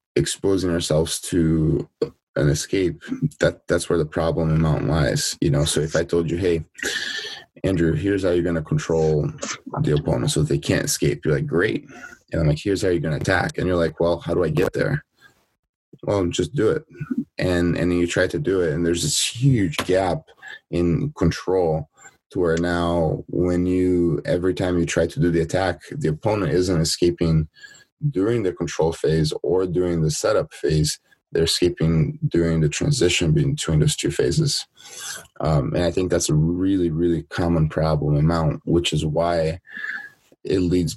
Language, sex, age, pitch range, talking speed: English, male, 20-39, 80-90 Hz, 185 wpm